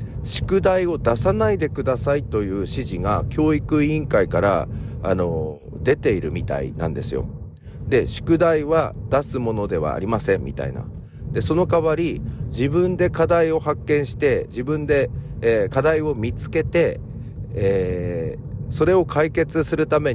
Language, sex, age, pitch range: Japanese, male, 40-59, 105-140 Hz